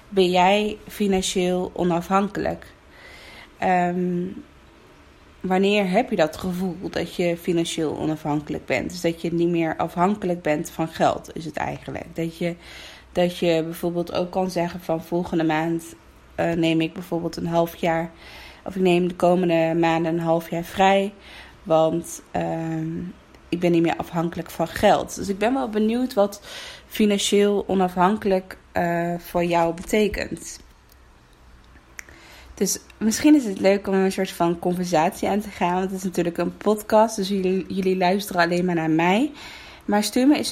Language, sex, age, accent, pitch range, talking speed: Dutch, female, 20-39, Dutch, 165-195 Hz, 160 wpm